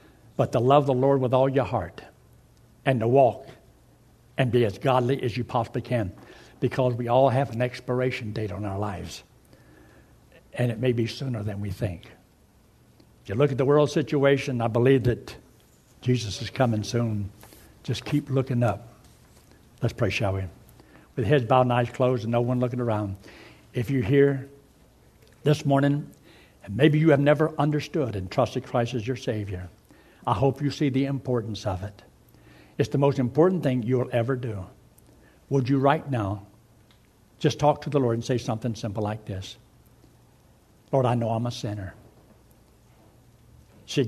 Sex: male